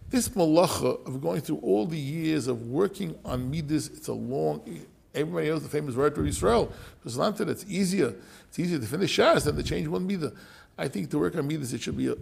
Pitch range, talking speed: 130-180 Hz, 215 wpm